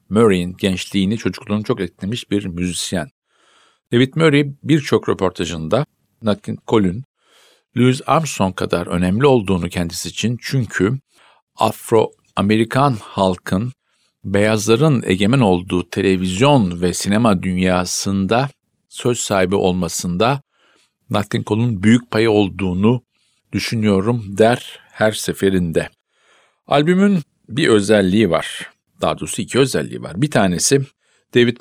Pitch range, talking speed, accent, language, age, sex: 95-120 Hz, 105 wpm, native, Turkish, 50-69, male